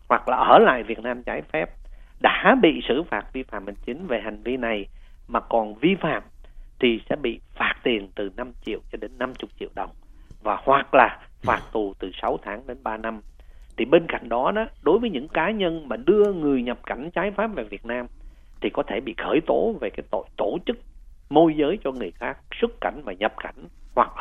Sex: male